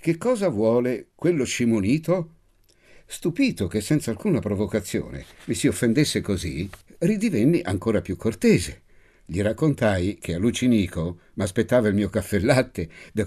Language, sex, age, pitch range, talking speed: Italian, male, 60-79, 90-135 Hz, 125 wpm